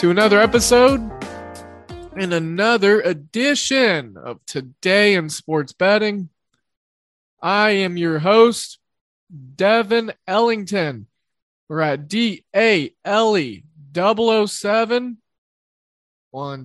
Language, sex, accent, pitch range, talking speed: English, male, American, 155-210 Hz, 90 wpm